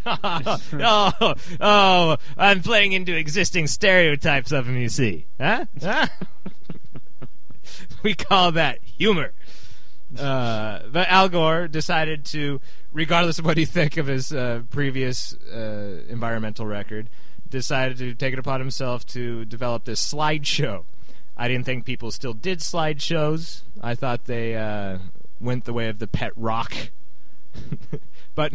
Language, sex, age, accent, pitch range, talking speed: English, male, 30-49, American, 110-145 Hz, 135 wpm